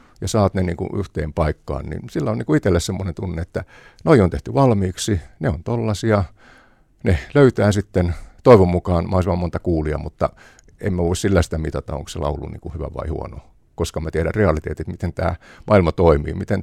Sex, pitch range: male, 80-100 Hz